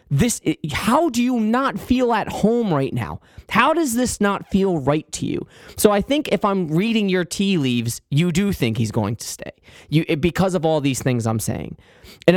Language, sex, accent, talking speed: English, male, American, 210 wpm